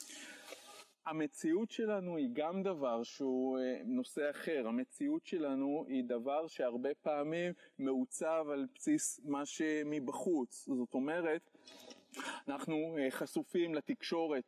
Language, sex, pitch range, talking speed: Hebrew, male, 140-185 Hz, 100 wpm